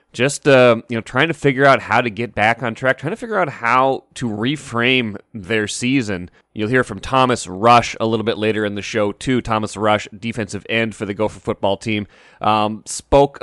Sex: male